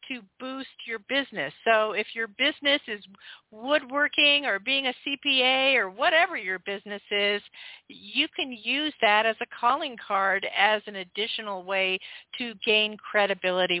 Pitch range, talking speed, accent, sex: 200-260 Hz, 150 wpm, American, female